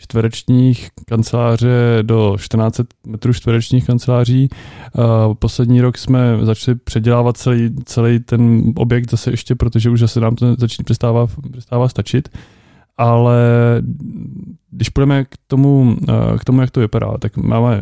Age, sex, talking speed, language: 20-39, male, 130 wpm, Czech